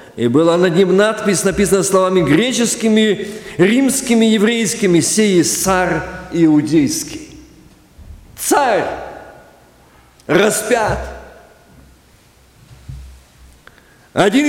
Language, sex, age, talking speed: Russian, male, 50-69, 65 wpm